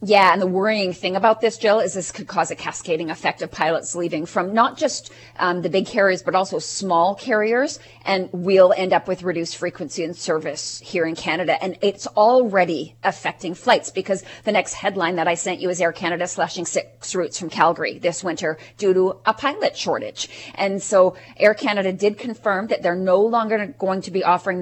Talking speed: 200 wpm